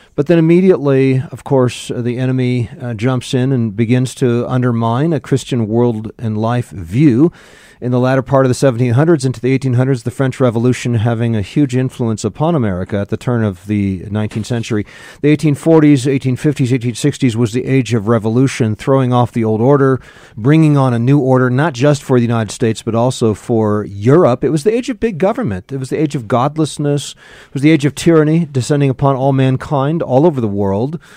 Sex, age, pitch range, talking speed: male, 40-59, 115-140 Hz, 195 wpm